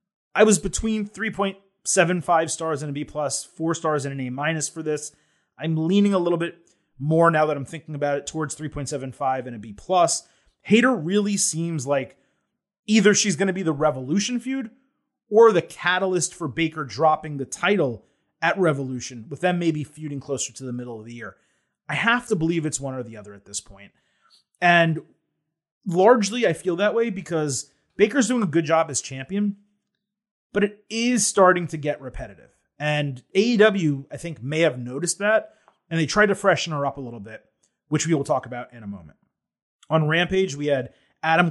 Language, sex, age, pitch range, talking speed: English, male, 30-49, 140-185 Hz, 185 wpm